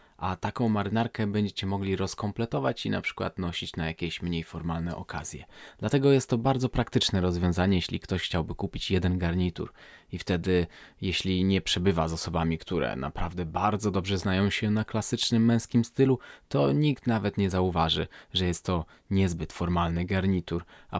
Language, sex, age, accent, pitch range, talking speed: Polish, male, 20-39, native, 90-110 Hz, 160 wpm